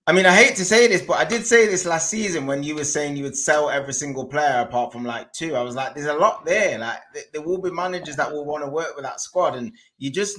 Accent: British